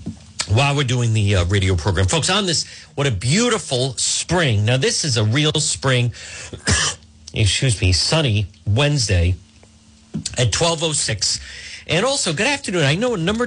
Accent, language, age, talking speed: American, English, 50-69, 150 wpm